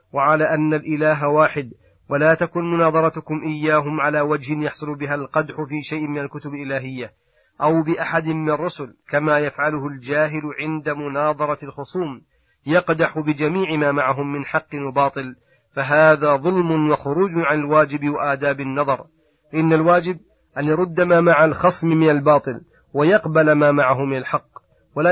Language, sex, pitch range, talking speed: Arabic, male, 145-165 Hz, 135 wpm